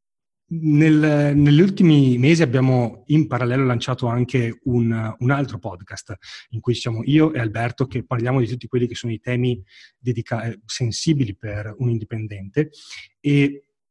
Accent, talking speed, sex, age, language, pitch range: native, 145 wpm, male, 30-49, Italian, 115-140 Hz